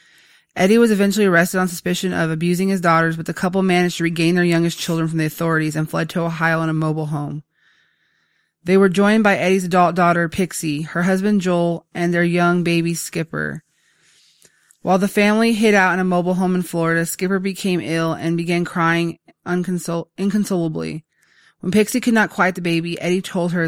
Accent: American